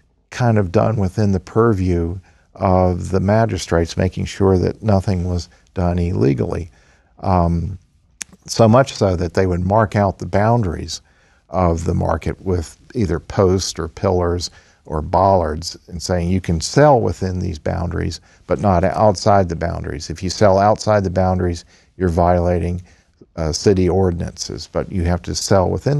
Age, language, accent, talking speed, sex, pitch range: 50-69, English, American, 155 wpm, male, 85-100 Hz